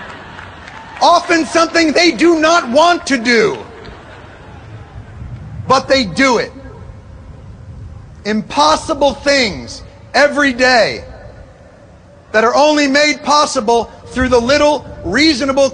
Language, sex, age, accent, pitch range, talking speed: English, male, 40-59, American, 235-270 Hz, 95 wpm